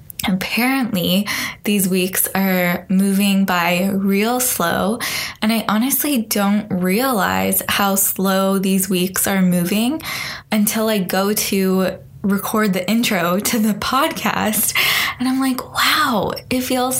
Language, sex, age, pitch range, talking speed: English, female, 10-29, 180-220 Hz, 125 wpm